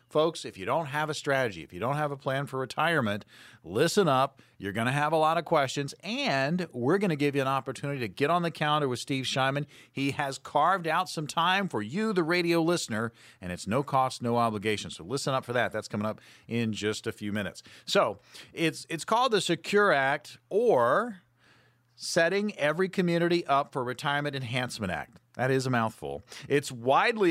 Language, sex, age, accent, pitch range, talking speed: English, male, 40-59, American, 120-165 Hz, 205 wpm